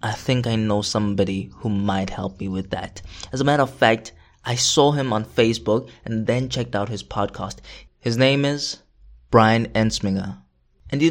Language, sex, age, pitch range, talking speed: English, male, 20-39, 105-140 Hz, 185 wpm